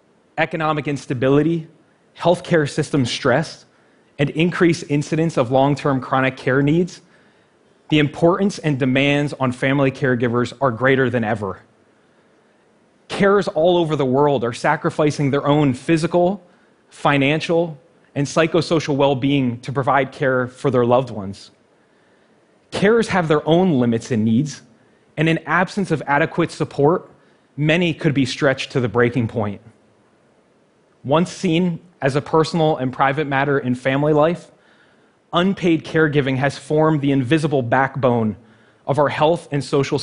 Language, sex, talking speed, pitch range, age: English, male, 135 wpm, 130-160 Hz, 30-49